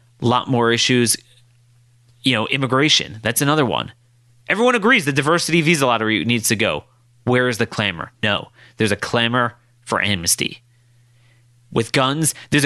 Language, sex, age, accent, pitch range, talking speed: English, male, 30-49, American, 120-170 Hz, 145 wpm